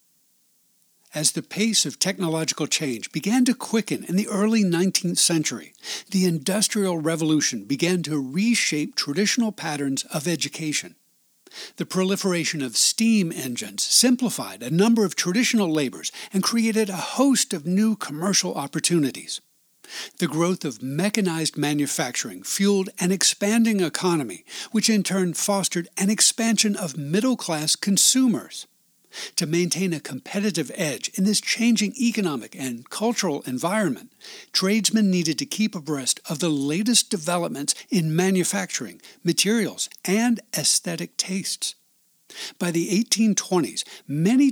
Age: 60-79